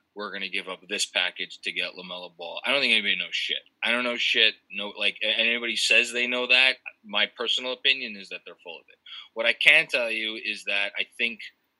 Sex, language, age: male, English, 20-39